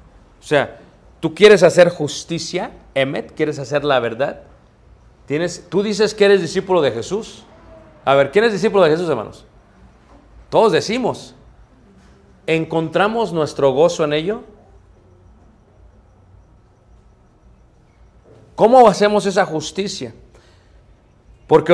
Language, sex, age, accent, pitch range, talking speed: Spanish, male, 40-59, Mexican, 105-170 Hz, 105 wpm